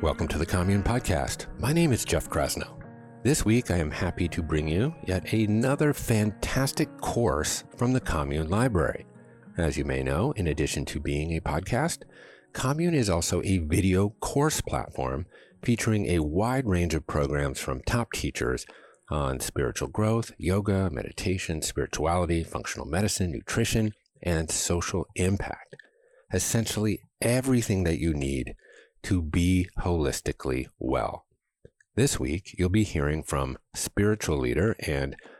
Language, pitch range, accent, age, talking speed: English, 80-115 Hz, American, 50-69, 140 wpm